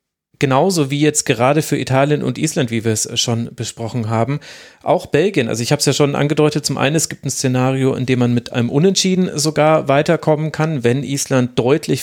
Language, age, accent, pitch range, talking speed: German, 40-59, German, 120-150 Hz, 205 wpm